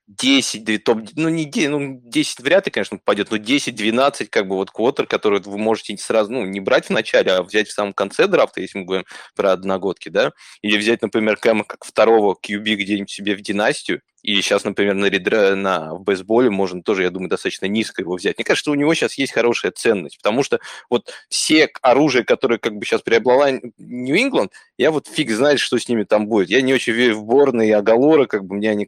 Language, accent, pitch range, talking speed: Russian, native, 100-120 Hz, 215 wpm